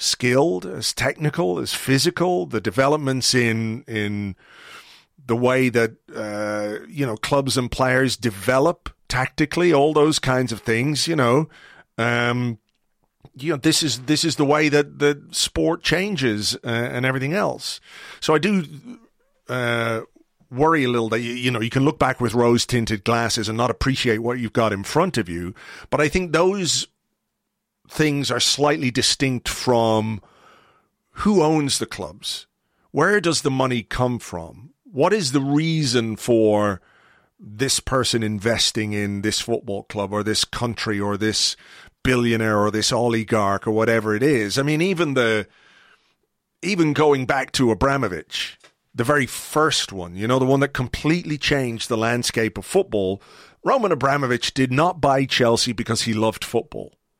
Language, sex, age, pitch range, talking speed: English, male, 40-59, 110-145 Hz, 155 wpm